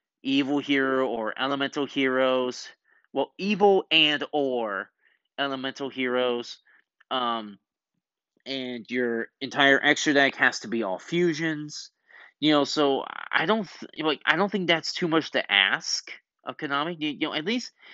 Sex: male